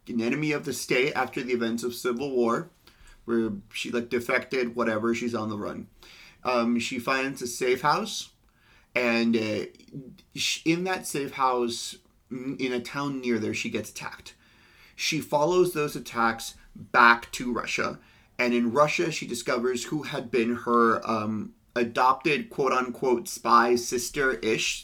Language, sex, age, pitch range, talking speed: English, male, 30-49, 115-125 Hz, 150 wpm